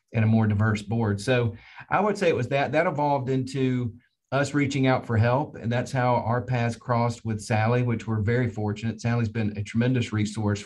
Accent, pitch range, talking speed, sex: American, 110-125 Hz, 210 wpm, male